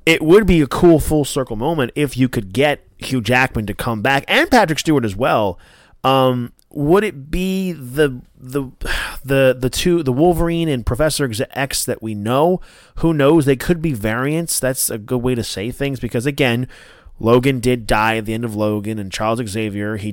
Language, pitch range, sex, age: English, 110-145 Hz, male, 30-49